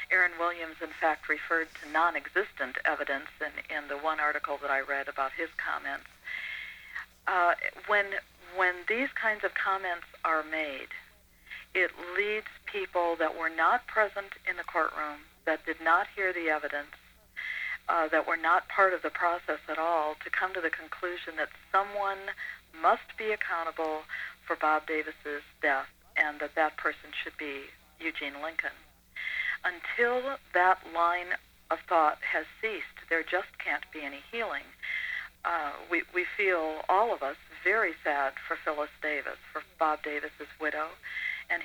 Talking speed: 155 wpm